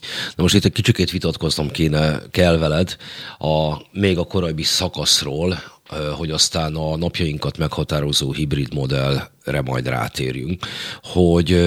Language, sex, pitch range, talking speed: Hungarian, male, 75-90 Hz, 125 wpm